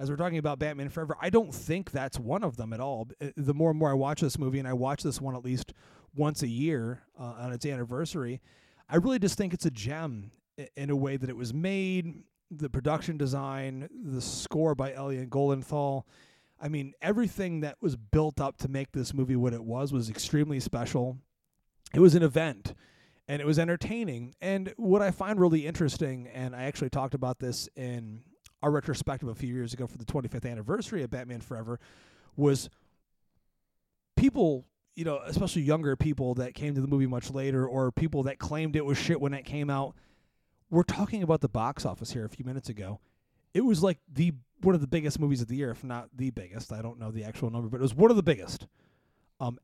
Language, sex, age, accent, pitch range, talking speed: English, male, 30-49, American, 125-160 Hz, 215 wpm